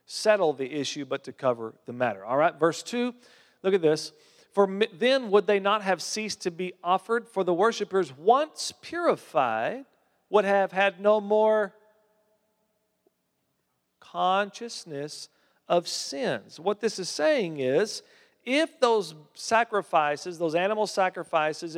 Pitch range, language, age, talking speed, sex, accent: 155-225 Hz, English, 40-59, 135 wpm, male, American